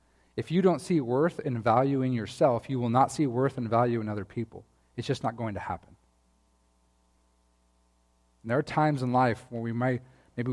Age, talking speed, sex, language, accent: 40-59, 200 wpm, male, English, American